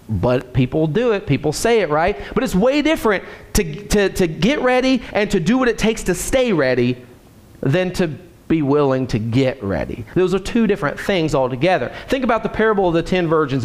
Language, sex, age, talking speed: English, male, 30-49, 205 wpm